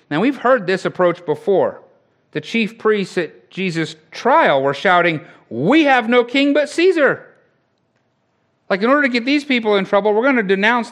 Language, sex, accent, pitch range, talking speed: English, male, American, 160-235 Hz, 180 wpm